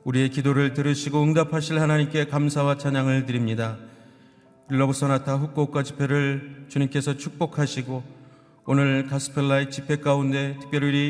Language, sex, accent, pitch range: Korean, male, native, 135-145 Hz